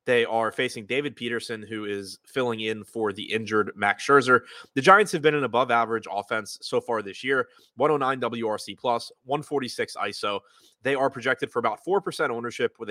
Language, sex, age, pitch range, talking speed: English, male, 20-39, 110-140 Hz, 170 wpm